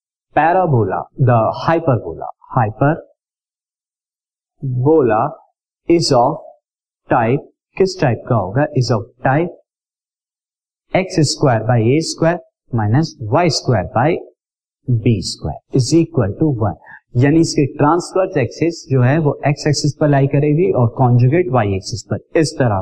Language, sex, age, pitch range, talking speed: Hindi, male, 50-69, 120-160 Hz, 85 wpm